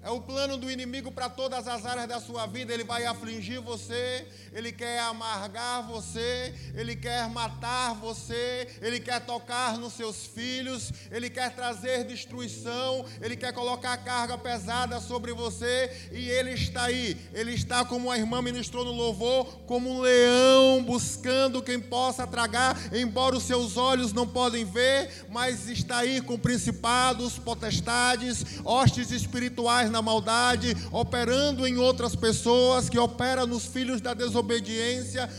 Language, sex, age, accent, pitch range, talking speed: Portuguese, male, 20-39, Brazilian, 225-255 Hz, 150 wpm